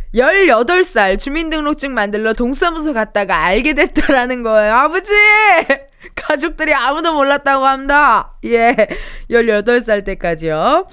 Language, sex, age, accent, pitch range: Korean, female, 20-39, native, 210-330 Hz